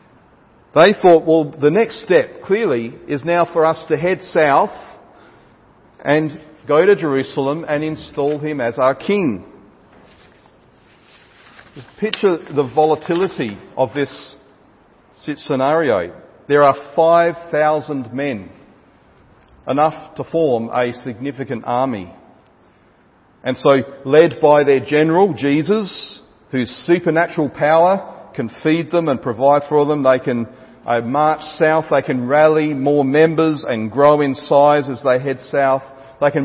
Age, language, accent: 40-59, English, Australian